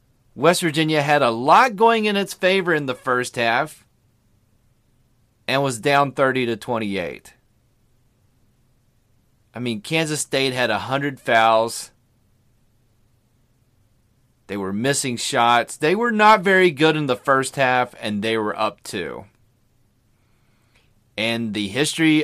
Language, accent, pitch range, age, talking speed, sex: English, American, 115-155 Hz, 30-49, 125 wpm, male